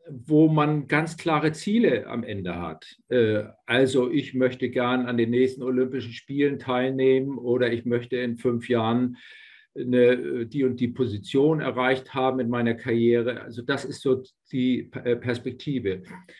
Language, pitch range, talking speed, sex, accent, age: German, 120-150 Hz, 145 wpm, male, German, 50-69